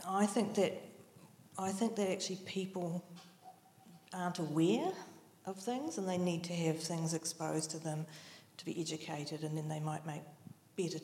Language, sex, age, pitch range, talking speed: English, female, 40-59, 155-185 Hz, 165 wpm